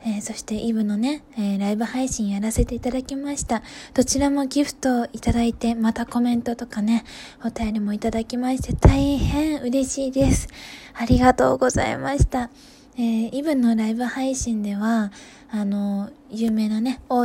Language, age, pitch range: Japanese, 20-39, 215-260 Hz